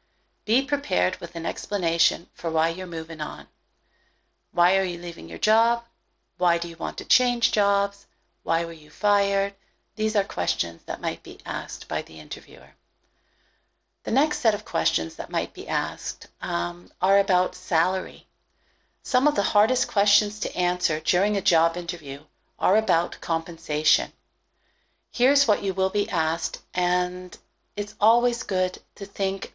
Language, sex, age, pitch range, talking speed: English, female, 50-69, 170-210 Hz, 155 wpm